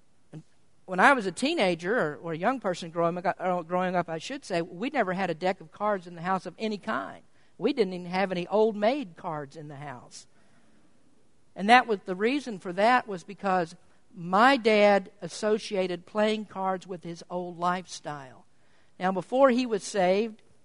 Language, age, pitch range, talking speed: English, 50-69, 180-230 Hz, 175 wpm